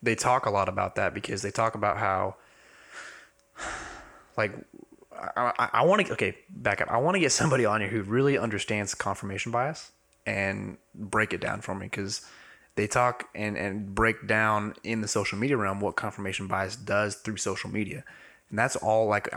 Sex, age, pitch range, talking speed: male, 20-39, 100-115 Hz, 185 wpm